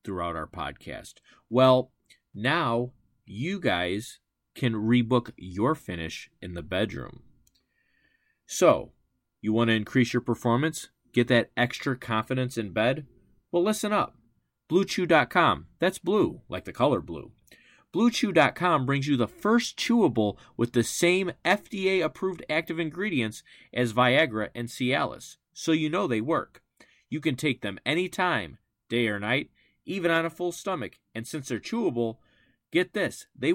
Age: 30-49